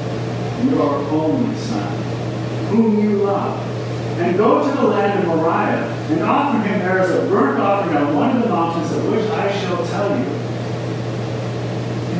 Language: English